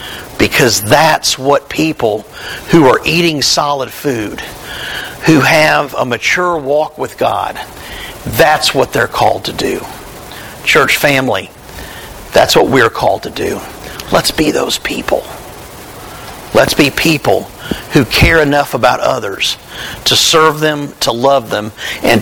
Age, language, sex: 50-69, English, male